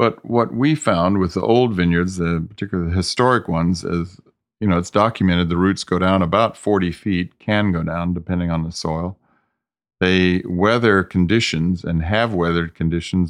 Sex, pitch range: male, 80-95 Hz